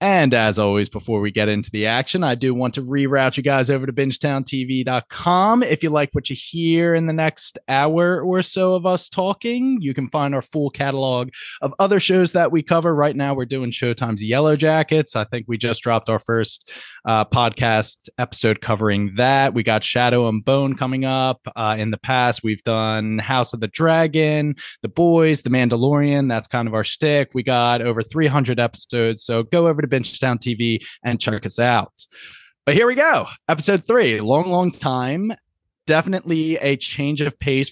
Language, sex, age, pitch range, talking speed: English, male, 20-39, 120-150 Hz, 190 wpm